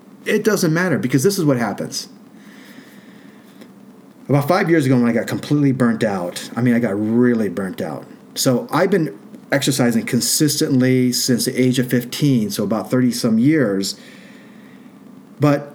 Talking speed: 155 wpm